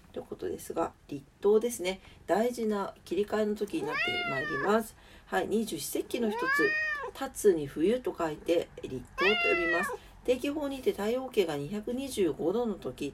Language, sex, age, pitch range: Japanese, female, 40-59, 205-280 Hz